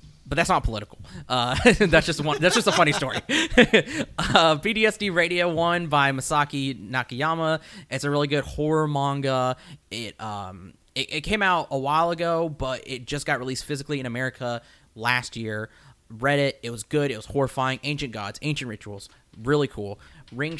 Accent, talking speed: American, 175 wpm